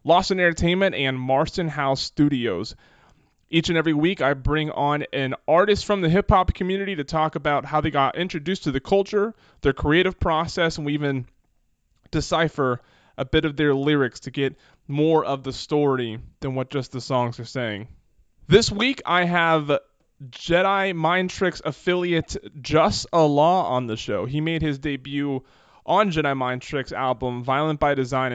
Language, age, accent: English, 20-39, American